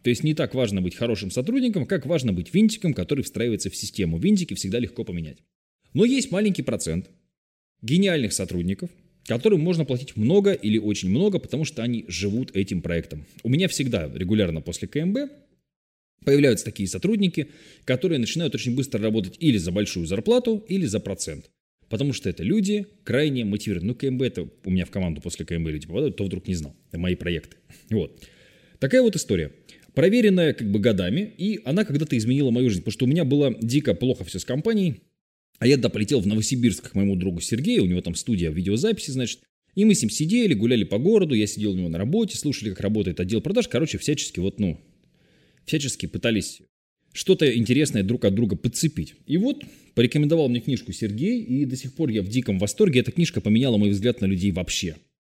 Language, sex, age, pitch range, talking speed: Russian, male, 20-39, 100-160 Hz, 190 wpm